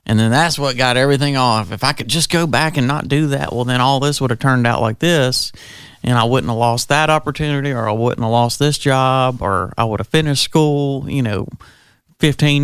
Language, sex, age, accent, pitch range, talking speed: English, male, 40-59, American, 115-140 Hz, 235 wpm